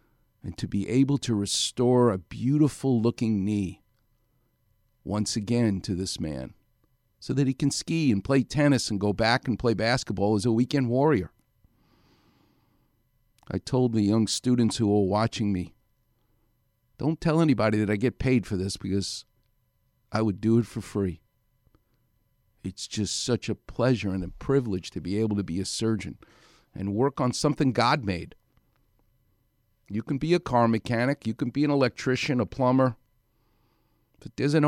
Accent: American